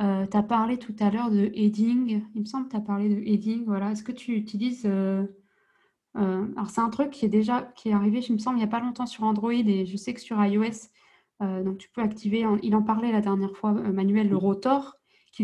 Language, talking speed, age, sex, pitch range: French, 255 wpm, 20-39, female, 200-225 Hz